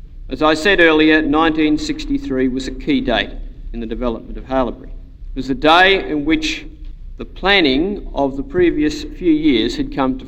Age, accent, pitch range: 50-69, Australian, 135-175 Hz